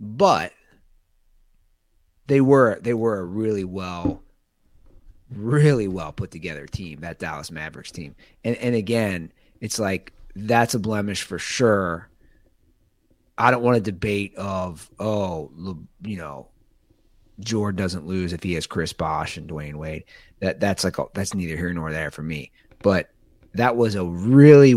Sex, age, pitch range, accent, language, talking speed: male, 30-49, 90-125 Hz, American, English, 155 wpm